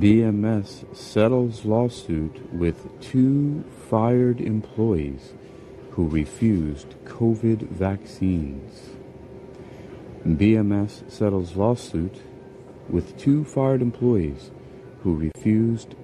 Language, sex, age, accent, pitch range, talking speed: English, male, 40-59, American, 85-125 Hz, 75 wpm